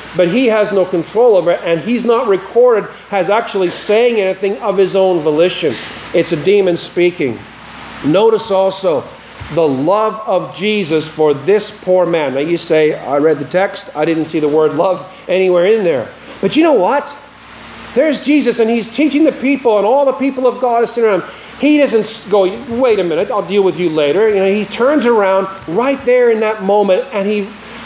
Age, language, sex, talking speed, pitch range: 40-59, English, male, 200 wpm, 180-240 Hz